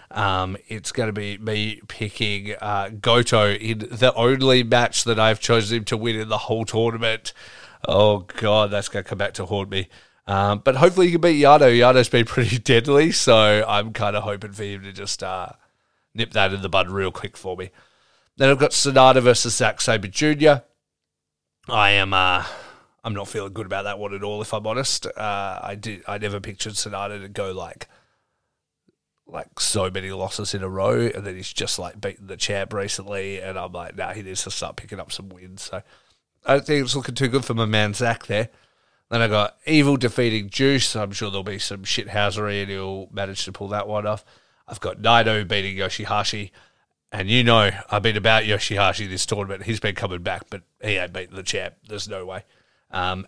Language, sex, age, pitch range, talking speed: English, male, 30-49, 100-115 Hz, 205 wpm